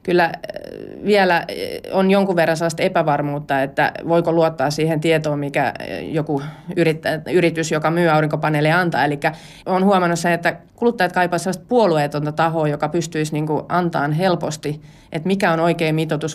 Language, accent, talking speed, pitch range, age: Finnish, native, 145 wpm, 150-170 Hz, 30-49